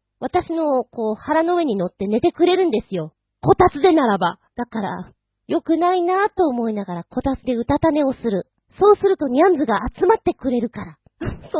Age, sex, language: 40-59, female, Japanese